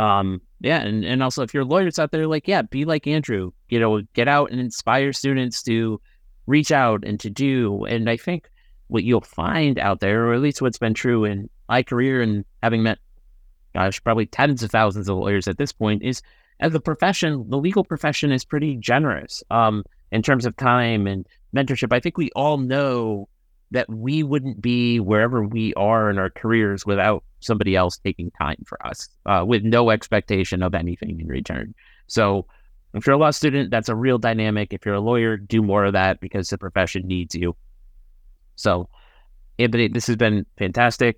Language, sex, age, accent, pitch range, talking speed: English, male, 30-49, American, 100-130 Hz, 195 wpm